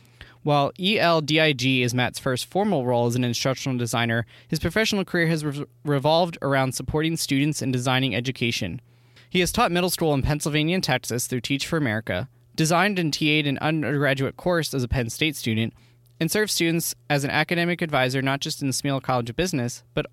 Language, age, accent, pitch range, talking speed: English, 20-39, American, 120-155 Hz, 185 wpm